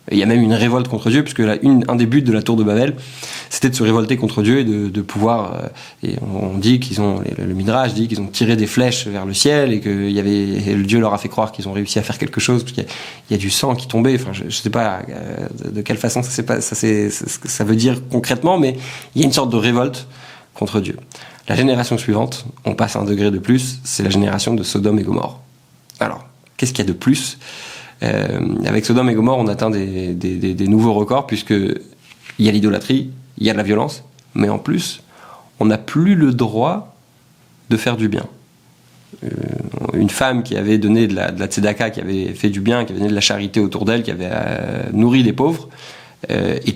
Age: 20-39